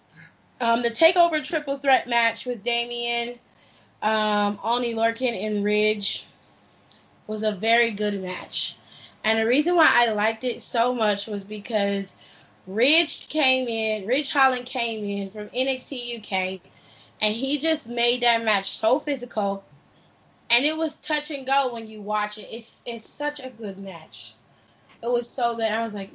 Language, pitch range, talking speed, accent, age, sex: English, 205-250 Hz, 160 wpm, American, 20-39, female